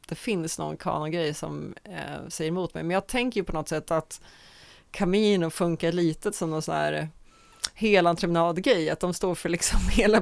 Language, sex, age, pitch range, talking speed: Swedish, female, 30-49, 165-200 Hz, 200 wpm